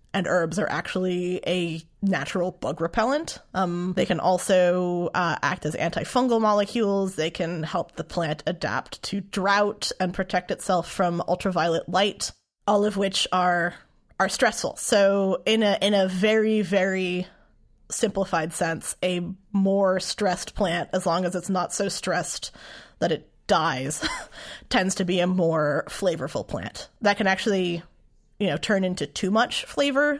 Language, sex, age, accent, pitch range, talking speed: English, female, 20-39, American, 175-205 Hz, 155 wpm